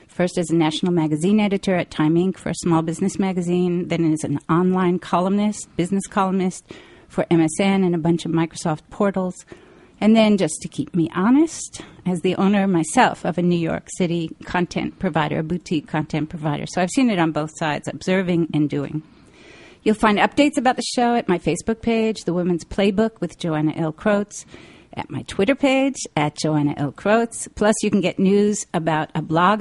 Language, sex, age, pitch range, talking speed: English, female, 50-69, 165-200 Hz, 190 wpm